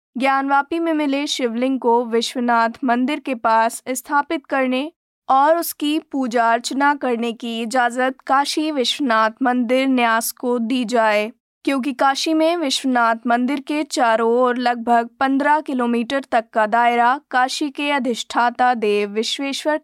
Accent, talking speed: native, 135 wpm